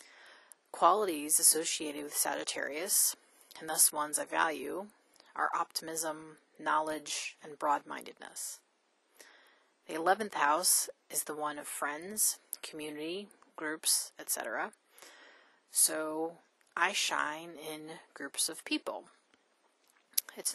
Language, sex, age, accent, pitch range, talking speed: English, female, 30-49, American, 155-185 Hz, 95 wpm